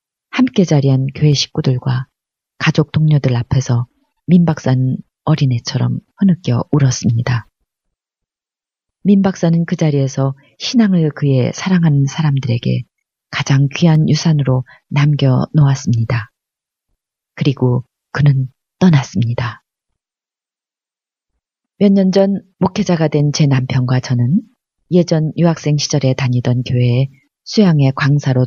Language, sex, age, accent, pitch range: Korean, female, 30-49, native, 130-170 Hz